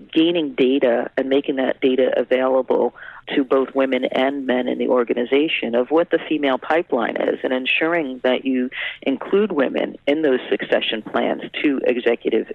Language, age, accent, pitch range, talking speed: English, 40-59, American, 125-145 Hz, 160 wpm